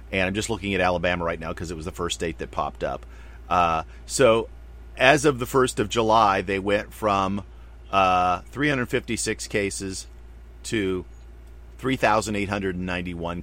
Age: 50-69